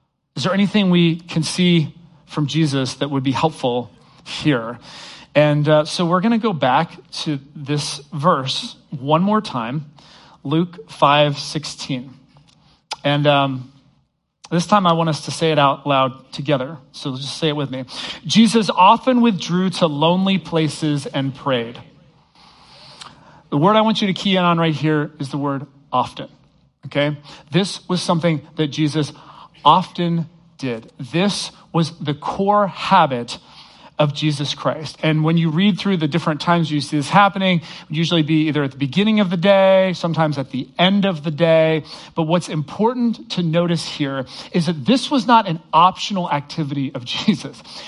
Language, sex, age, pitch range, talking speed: English, male, 40-59, 145-185 Hz, 170 wpm